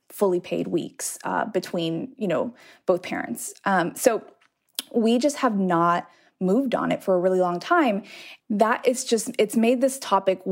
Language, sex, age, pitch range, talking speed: English, female, 20-39, 180-245 Hz, 170 wpm